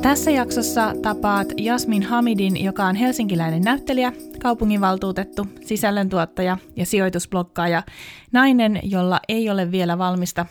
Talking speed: 110 wpm